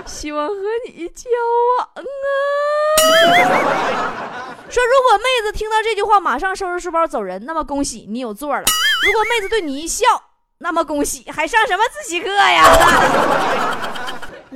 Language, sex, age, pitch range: Chinese, female, 20-39, 245-400 Hz